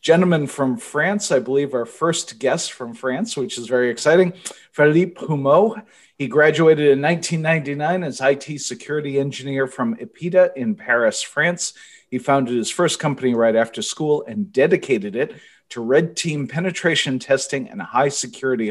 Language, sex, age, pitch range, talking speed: English, male, 40-59, 130-170 Hz, 155 wpm